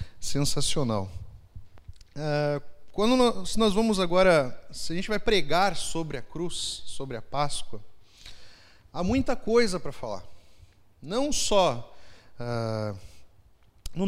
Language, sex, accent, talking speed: Portuguese, male, Brazilian, 105 wpm